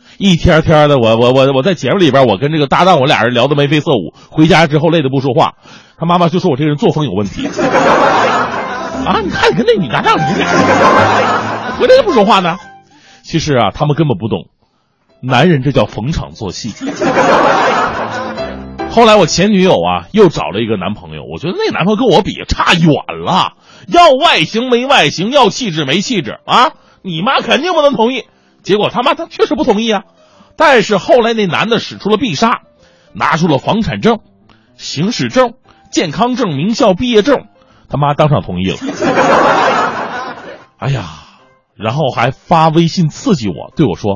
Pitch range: 140-230 Hz